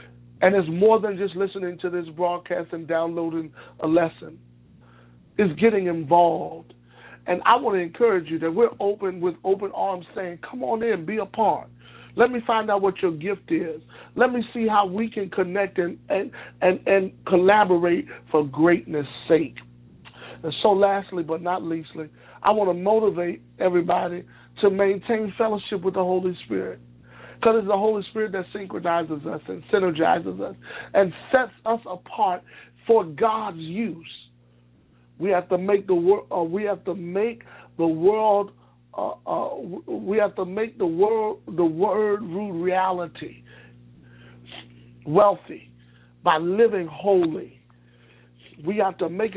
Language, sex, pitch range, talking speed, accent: English, male, 160-205 Hz, 155 wpm, American